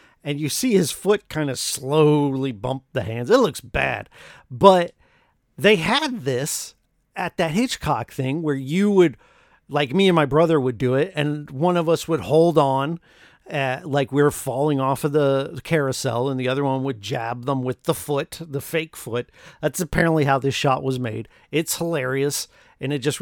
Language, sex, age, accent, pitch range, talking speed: English, male, 50-69, American, 130-165 Hz, 190 wpm